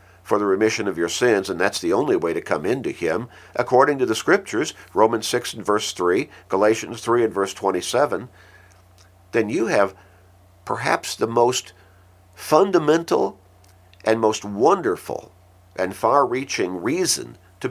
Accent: American